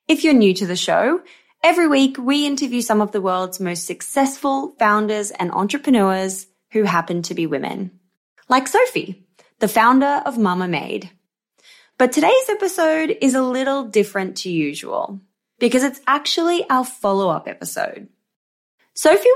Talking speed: 145 wpm